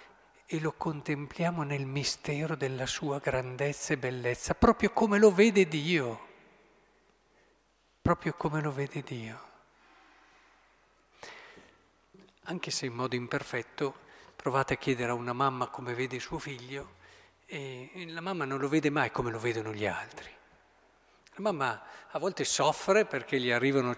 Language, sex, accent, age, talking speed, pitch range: Italian, male, native, 50-69, 140 wpm, 130-165 Hz